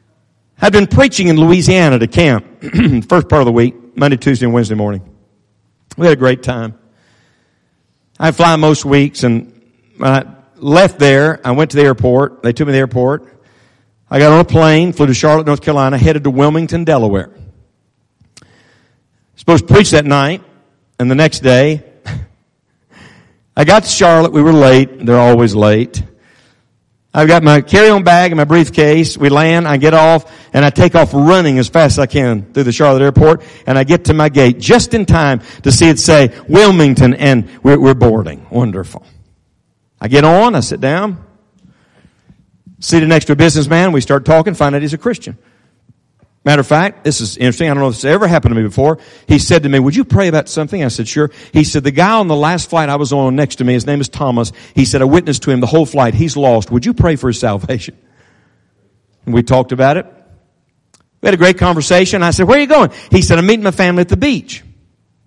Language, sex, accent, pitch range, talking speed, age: English, male, American, 120-160 Hz, 210 wpm, 50-69